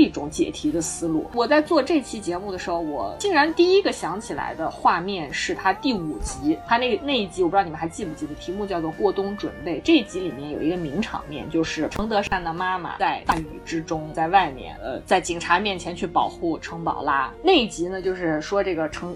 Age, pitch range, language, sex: 20-39, 180-280 Hz, Chinese, female